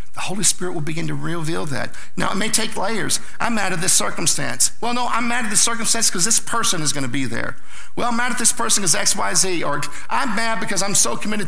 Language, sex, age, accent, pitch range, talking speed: English, male, 50-69, American, 140-205 Hz, 260 wpm